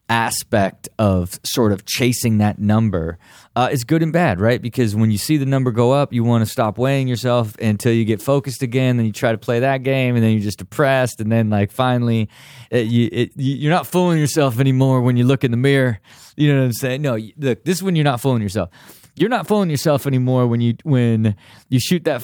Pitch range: 100-135 Hz